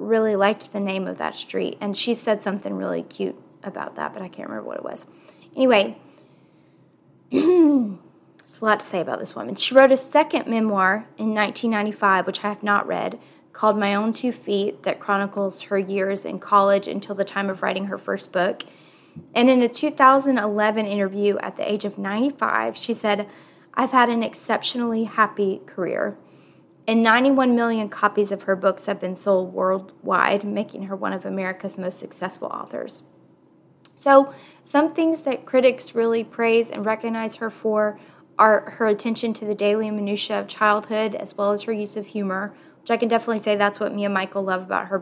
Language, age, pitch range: English, 20-39, 200-230 Hz